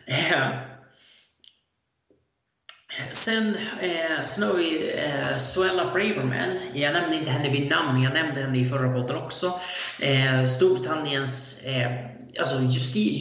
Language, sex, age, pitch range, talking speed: Swedish, male, 30-49, 130-160 Hz, 110 wpm